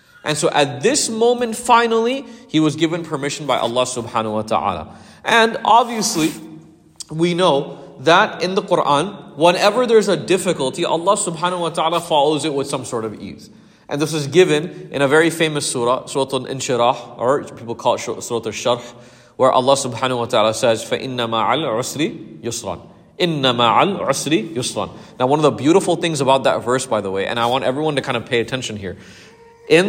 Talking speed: 170 wpm